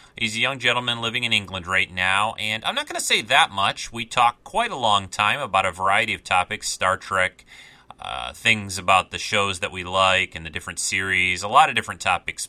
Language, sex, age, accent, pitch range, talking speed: English, male, 30-49, American, 95-120 Hz, 225 wpm